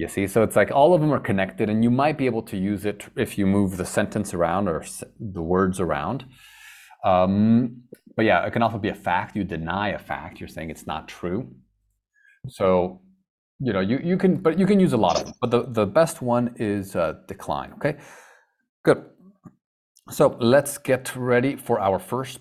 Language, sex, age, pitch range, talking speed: English, male, 30-49, 95-150 Hz, 205 wpm